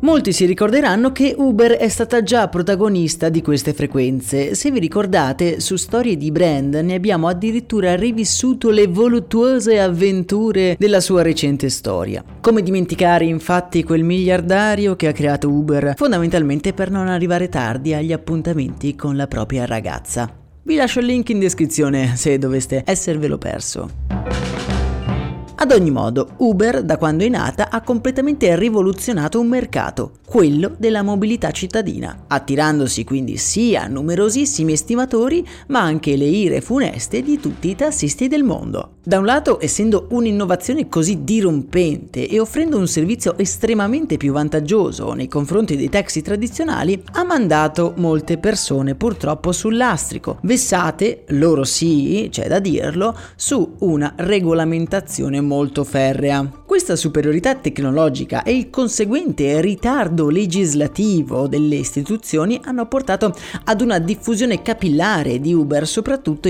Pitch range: 150-225 Hz